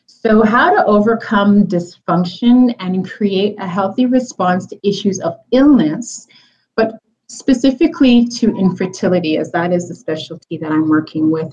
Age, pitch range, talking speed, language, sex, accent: 30-49, 165-205 Hz, 140 wpm, English, female, American